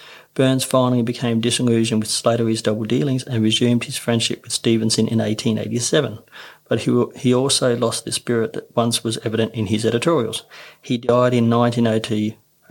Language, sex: English, male